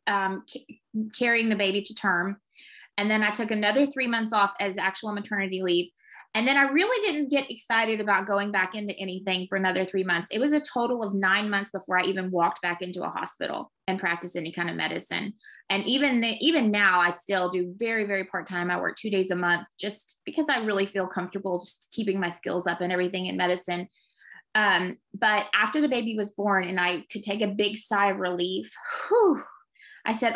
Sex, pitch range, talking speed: female, 185-230 Hz, 210 wpm